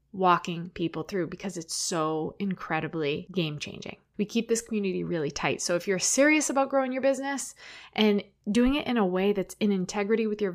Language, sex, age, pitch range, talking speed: English, female, 20-39, 185-230 Hz, 190 wpm